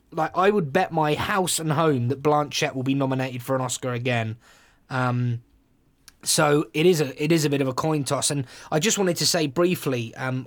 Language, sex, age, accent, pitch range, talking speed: English, male, 20-39, British, 130-160 Hz, 220 wpm